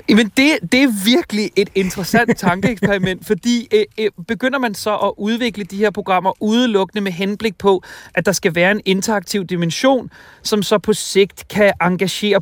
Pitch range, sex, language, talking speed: 170-215 Hz, male, Danish, 175 wpm